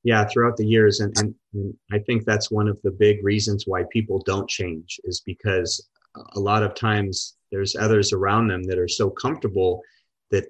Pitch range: 100-115 Hz